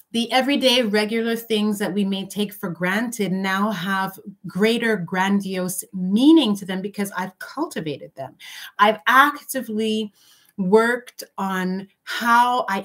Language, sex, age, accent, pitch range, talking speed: English, female, 30-49, American, 175-215 Hz, 125 wpm